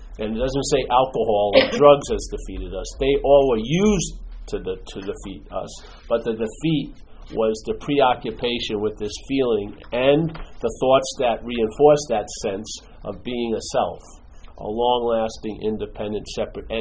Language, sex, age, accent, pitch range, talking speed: English, male, 50-69, American, 110-145 Hz, 155 wpm